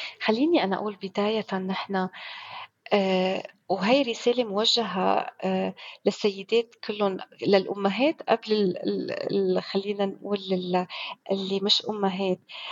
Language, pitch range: Arabic, 205-275 Hz